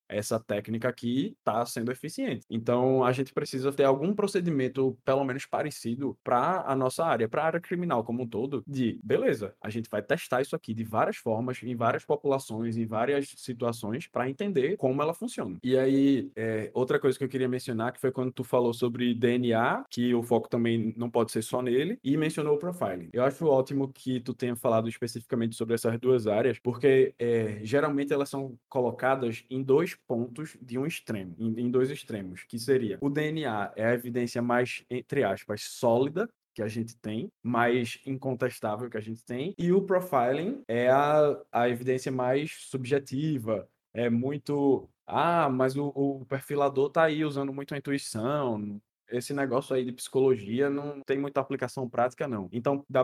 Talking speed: 180 wpm